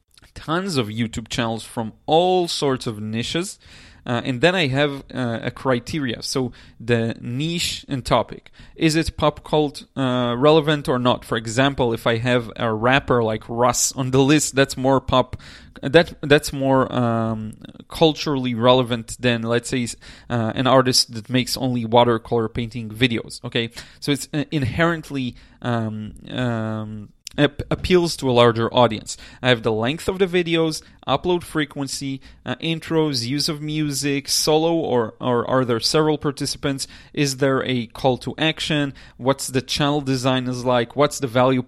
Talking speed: 160 wpm